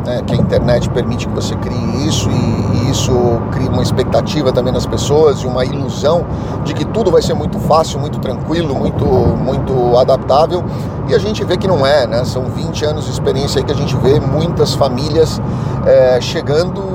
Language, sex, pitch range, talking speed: Portuguese, male, 125-150 Hz, 185 wpm